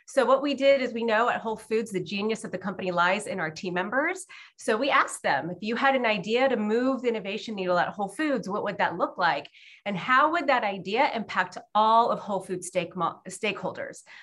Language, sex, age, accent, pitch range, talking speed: English, female, 30-49, American, 185-245 Hz, 225 wpm